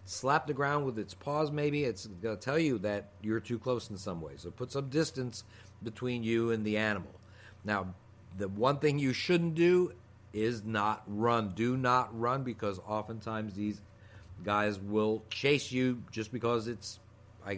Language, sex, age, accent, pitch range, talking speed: English, male, 50-69, American, 105-130 Hz, 180 wpm